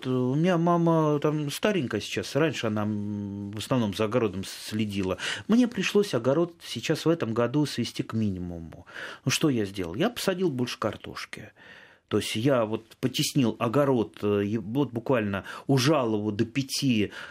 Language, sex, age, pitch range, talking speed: Russian, male, 30-49, 105-150 Hz, 155 wpm